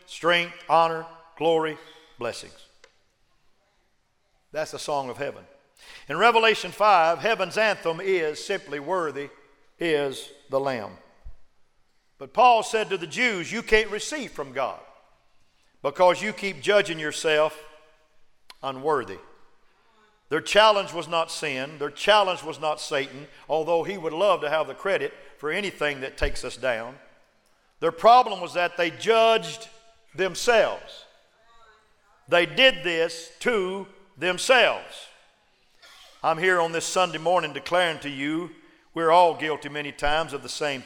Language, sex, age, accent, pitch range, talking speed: English, male, 50-69, American, 150-190 Hz, 130 wpm